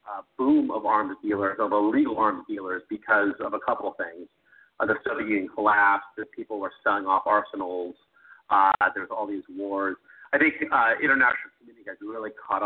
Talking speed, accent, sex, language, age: 190 wpm, American, male, English, 40-59